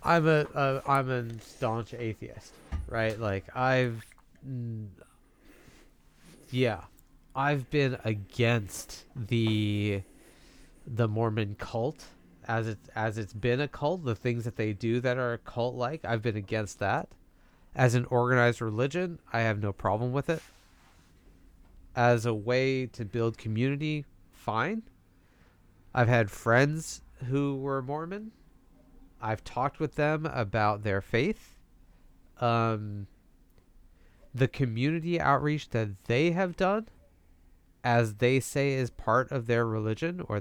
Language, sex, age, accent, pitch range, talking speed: English, male, 30-49, American, 100-135 Hz, 125 wpm